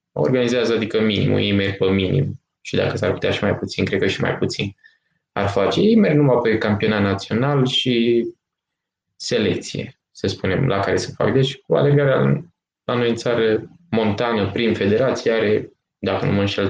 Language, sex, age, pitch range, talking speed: Romanian, male, 20-39, 100-125 Hz, 170 wpm